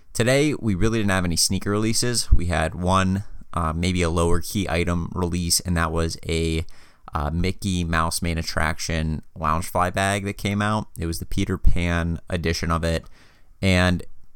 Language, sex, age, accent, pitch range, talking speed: English, male, 30-49, American, 85-100 Hz, 170 wpm